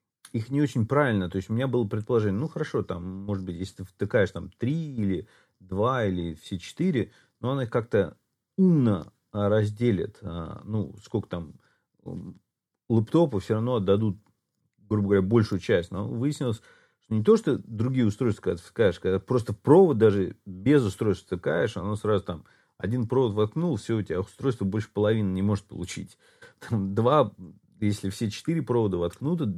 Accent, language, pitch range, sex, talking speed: native, Russian, 100-125 Hz, male, 165 wpm